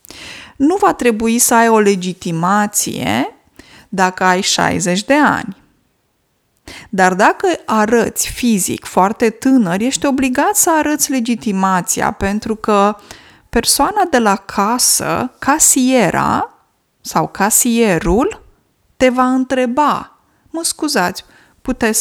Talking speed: 105 wpm